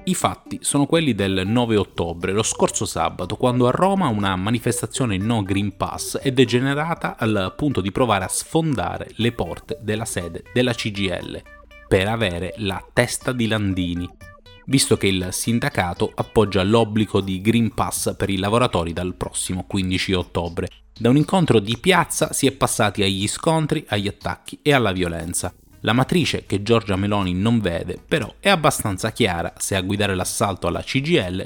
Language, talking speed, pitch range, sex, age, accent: Italian, 165 wpm, 95-120 Hz, male, 30-49, native